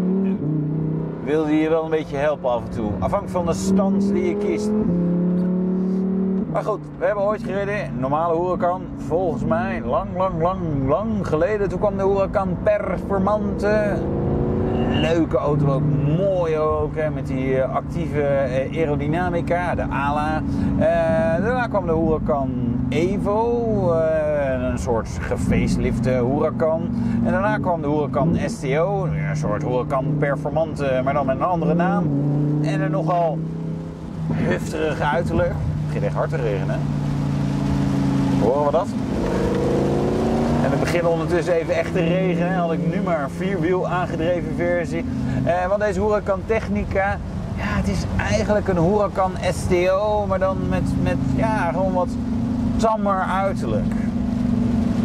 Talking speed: 140 wpm